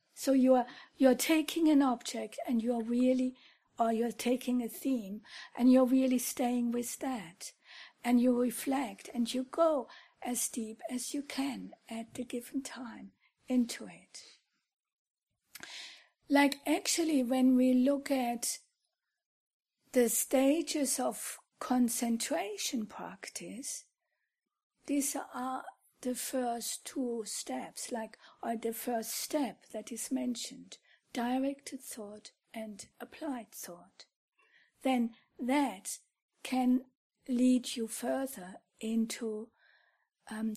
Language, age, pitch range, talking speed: English, 60-79, 235-275 Hz, 115 wpm